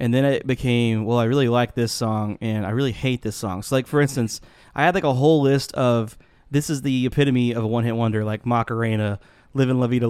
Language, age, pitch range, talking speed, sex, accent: English, 20-39, 115-130 Hz, 240 wpm, male, American